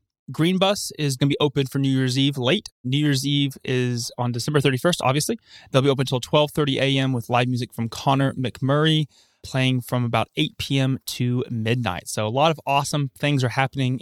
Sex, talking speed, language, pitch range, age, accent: male, 200 wpm, English, 125-150 Hz, 20-39, American